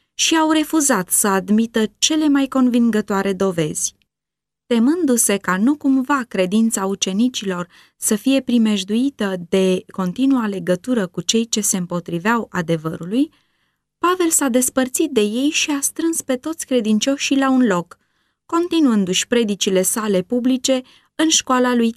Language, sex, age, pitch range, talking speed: Romanian, female, 20-39, 185-270 Hz, 130 wpm